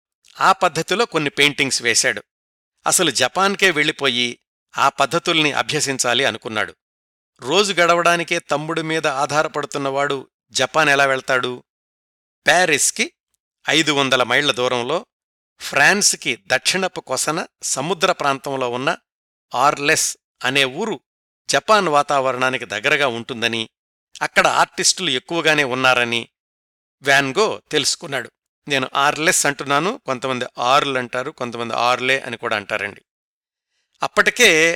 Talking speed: 95 wpm